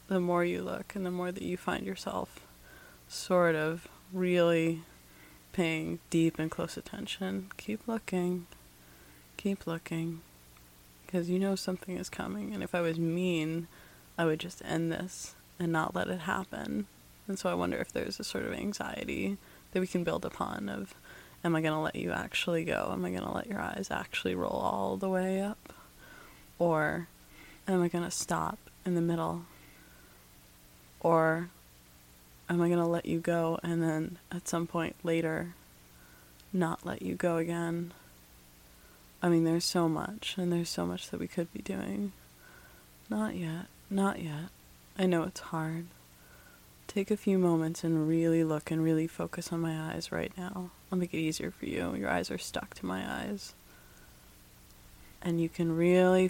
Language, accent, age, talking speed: English, American, 20-39, 175 wpm